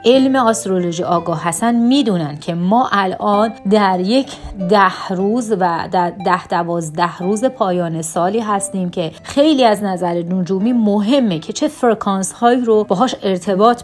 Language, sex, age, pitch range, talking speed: Persian, female, 30-49, 180-220 Hz, 145 wpm